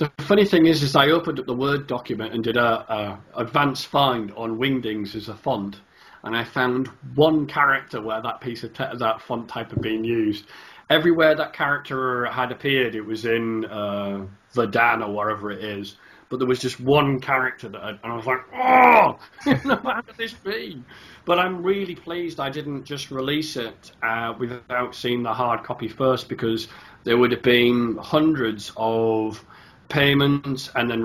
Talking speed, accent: 180 wpm, British